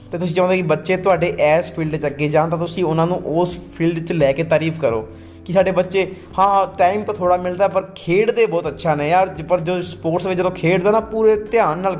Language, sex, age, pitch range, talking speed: Punjabi, male, 20-39, 155-185 Hz, 225 wpm